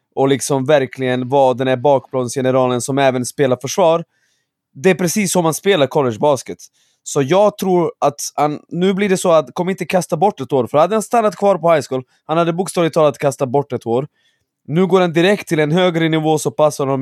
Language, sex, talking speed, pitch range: Swedish, male, 220 wpm, 140-180 Hz